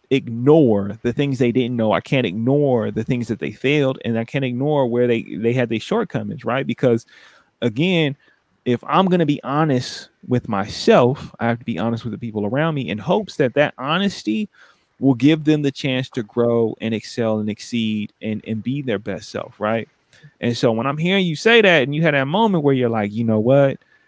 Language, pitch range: English, 110-145 Hz